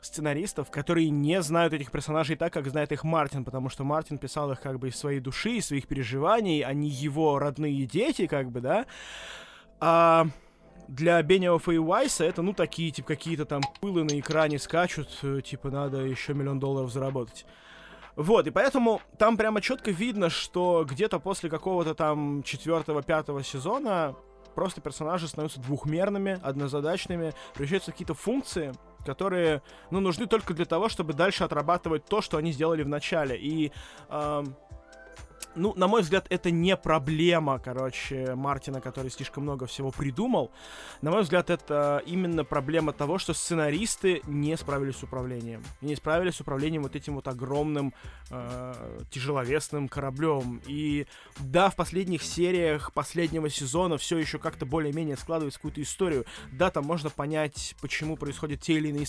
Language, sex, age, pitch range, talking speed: Russian, male, 20-39, 140-170 Hz, 155 wpm